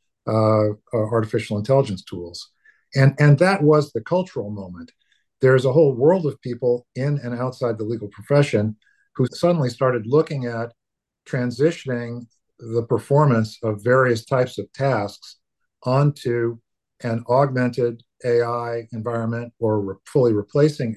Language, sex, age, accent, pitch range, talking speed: English, male, 50-69, American, 110-135 Hz, 130 wpm